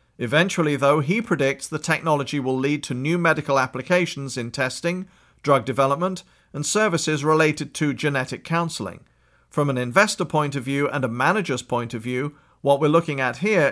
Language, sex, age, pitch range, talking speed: English, male, 40-59, 135-170 Hz, 170 wpm